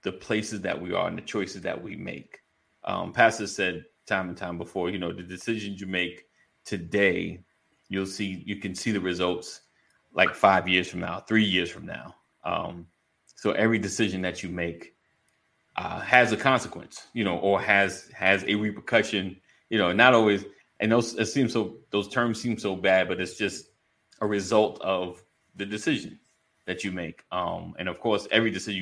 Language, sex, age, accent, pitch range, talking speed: English, male, 30-49, American, 90-110 Hz, 185 wpm